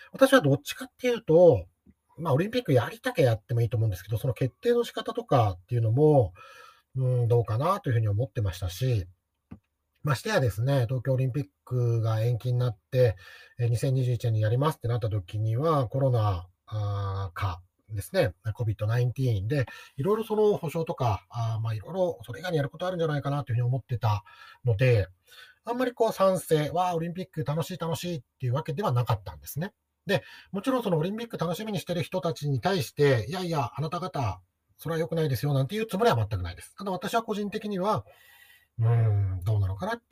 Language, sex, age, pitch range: Japanese, male, 40-59, 110-175 Hz